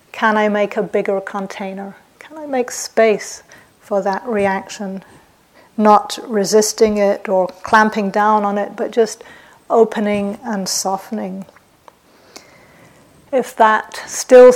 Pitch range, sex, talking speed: 205-225 Hz, female, 120 wpm